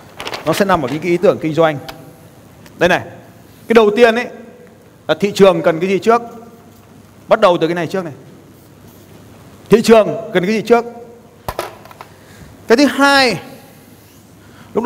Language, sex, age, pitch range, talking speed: Vietnamese, male, 30-49, 160-235 Hz, 165 wpm